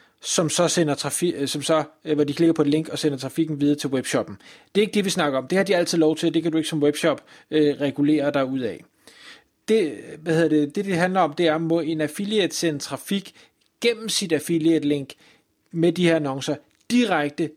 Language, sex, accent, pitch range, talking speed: Danish, male, native, 145-175 Hz, 230 wpm